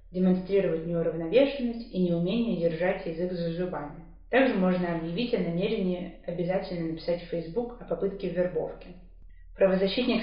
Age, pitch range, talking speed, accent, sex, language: 20-39, 170-215 Hz, 125 wpm, native, female, Russian